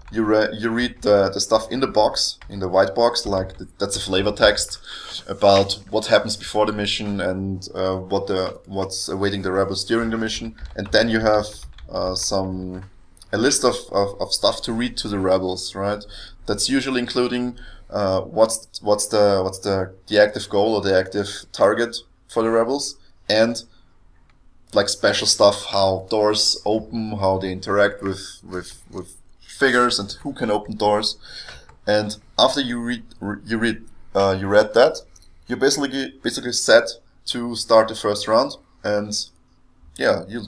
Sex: male